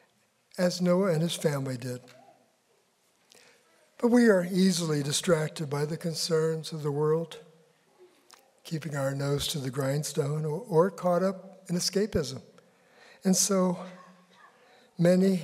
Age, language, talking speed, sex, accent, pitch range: 60-79, English, 120 wpm, male, American, 145-185 Hz